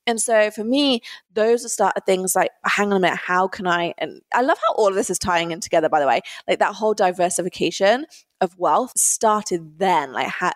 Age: 20-39